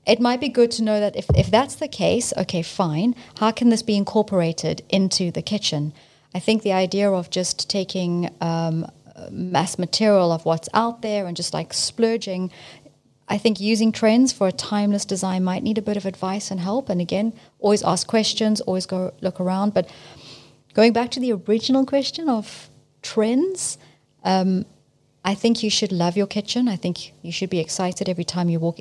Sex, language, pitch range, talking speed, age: female, English, 170-215 Hz, 190 wpm, 30-49